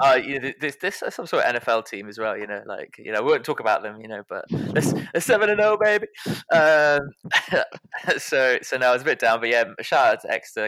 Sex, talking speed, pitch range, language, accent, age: male, 260 wpm, 110-150 Hz, English, British, 20-39